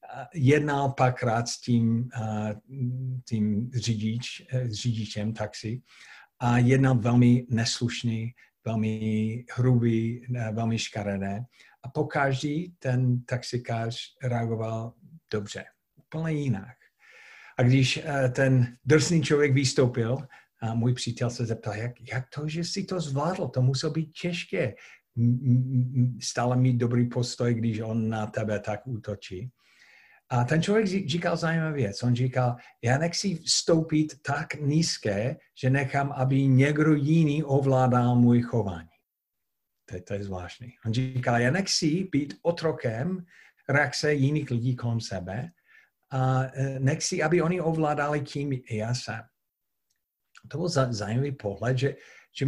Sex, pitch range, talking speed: male, 115-145 Hz, 125 wpm